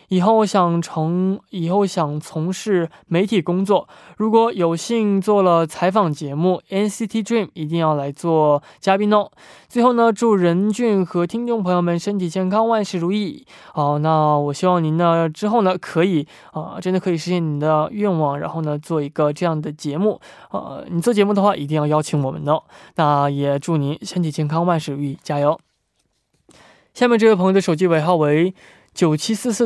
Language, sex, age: Korean, male, 20-39